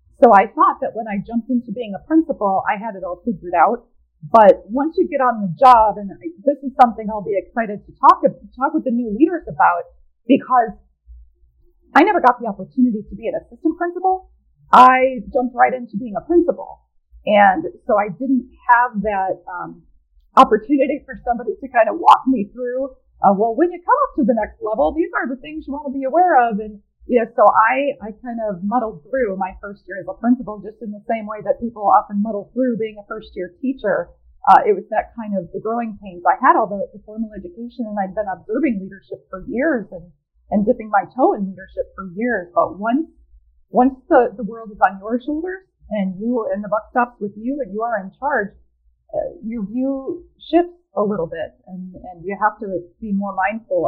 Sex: female